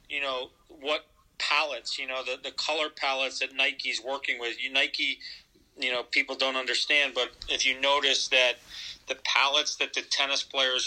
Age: 40-59